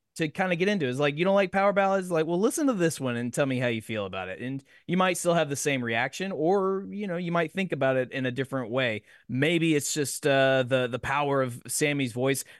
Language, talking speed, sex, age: English, 265 wpm, male, 20-39